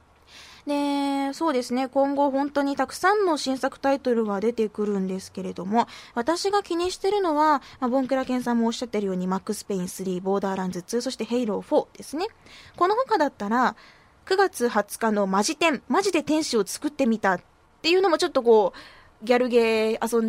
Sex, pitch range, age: female, 210-285 Hz, 20-39